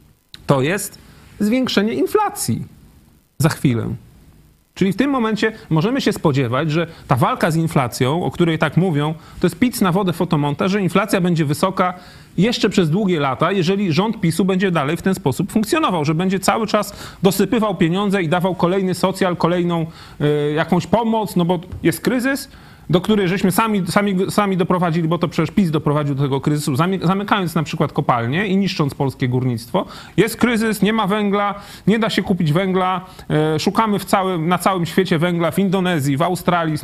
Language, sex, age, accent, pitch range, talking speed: Polish, male, 30-49, native, 155-200 Hz, 175 wpm